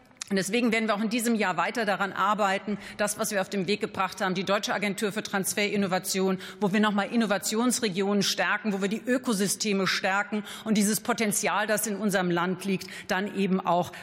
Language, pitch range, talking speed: German, 190-220 Hz, 195 wpm